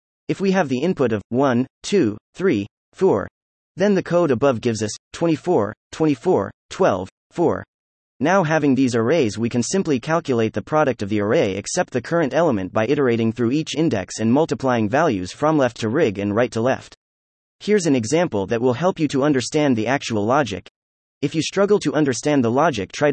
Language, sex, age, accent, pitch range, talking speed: English, male, 30-49, American, 110-160 Hz, 190 wpm